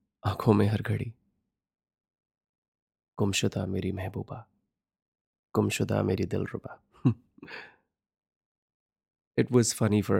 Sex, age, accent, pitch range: male, 20-39, native, 100-115 Hz